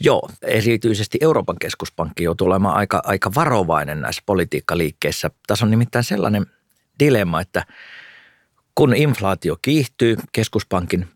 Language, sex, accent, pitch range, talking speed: Finnish, male, native, 90-110 Hz, 120 wpm